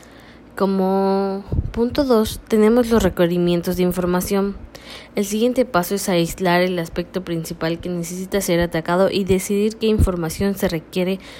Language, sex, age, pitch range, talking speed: Spanish, female, 20-39, 170-200 Hz, 135 wpm